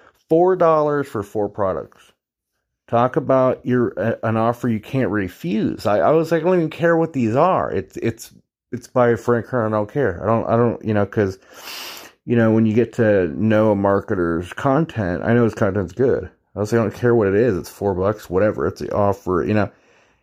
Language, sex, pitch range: English, male, 105-145 Hz